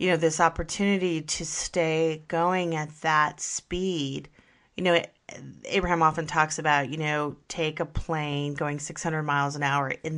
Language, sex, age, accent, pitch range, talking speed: English, female, 30-49, American, 155-180 Hz, 165 wpm